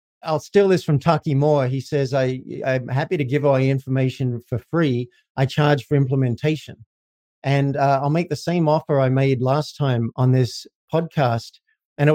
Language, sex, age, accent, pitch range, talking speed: English, male, 50-69, Australian, 125-155 Hz, 185 wpm